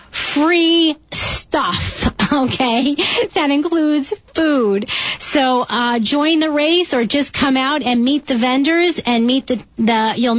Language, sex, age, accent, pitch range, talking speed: English, female, 40-59, American, 230-275 Hz, 140 wpm